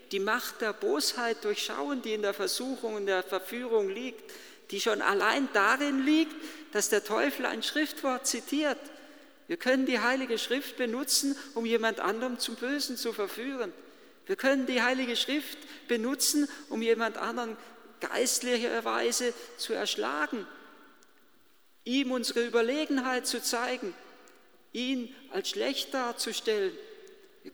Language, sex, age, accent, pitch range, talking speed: German, male, 50-69, German, 225-340 Hz, 130 wpm